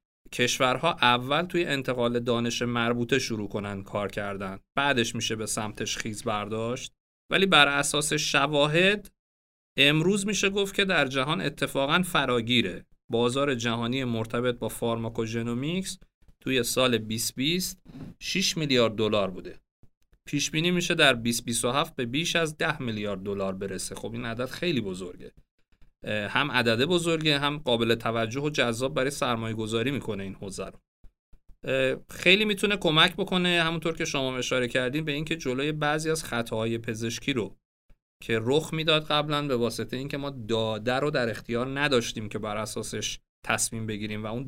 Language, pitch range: Persian, 115-145 Hz